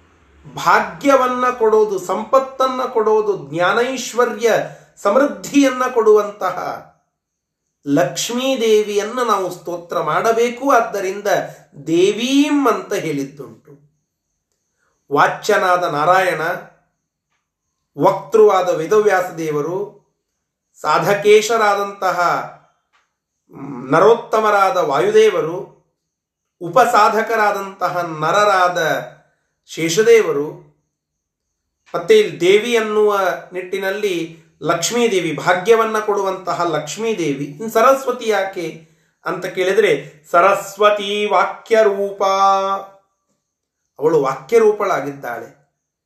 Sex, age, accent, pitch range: male, 30-49, native, 175-235 Hz